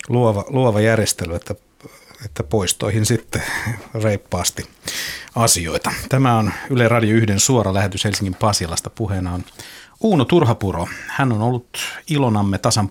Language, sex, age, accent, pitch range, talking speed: Finnish, male, 50-69, native, 95-115 Hz, 125 wpm